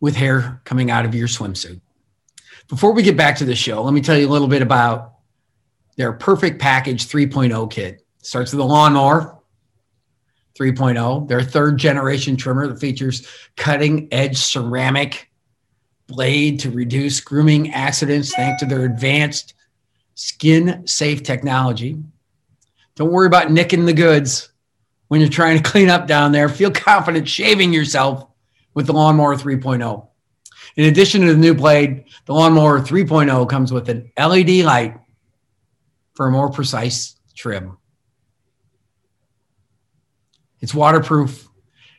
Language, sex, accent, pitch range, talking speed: English, male, American, 120-150 Hz, 135 wpm